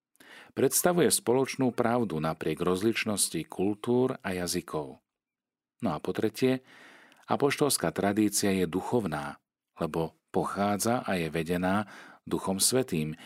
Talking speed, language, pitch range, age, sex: 105 wpm, Slovak, 85-110 Hz, 40-59, male